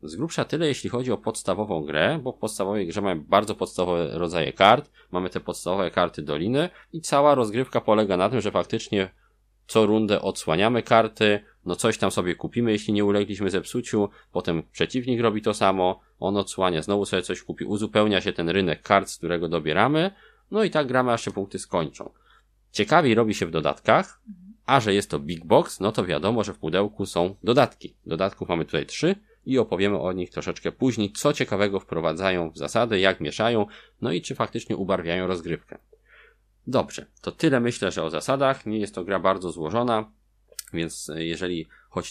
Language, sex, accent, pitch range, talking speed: Polish, male, native, 85-115 Hz, 180 wpm